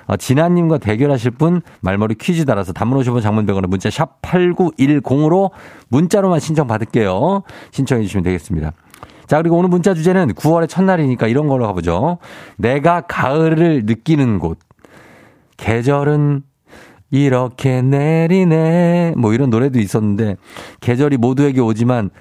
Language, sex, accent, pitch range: Korean, male, native, 105-150 Hz